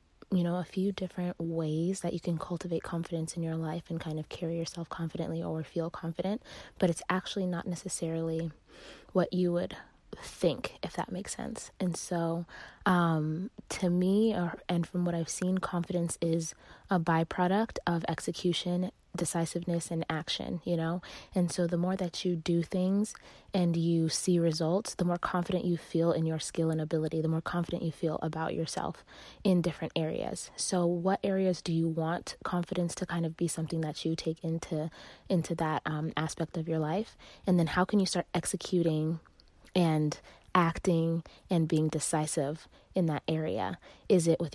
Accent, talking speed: American, 175 wpm